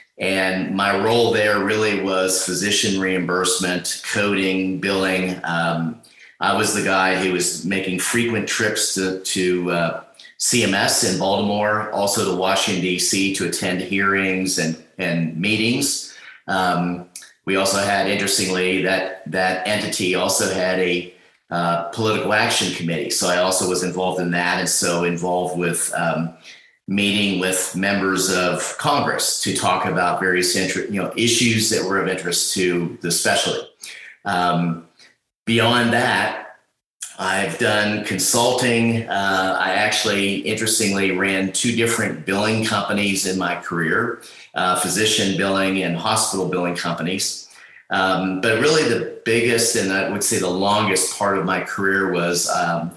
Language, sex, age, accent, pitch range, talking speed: English, male, 40-59, American, 90-100 Hz, 140 wpm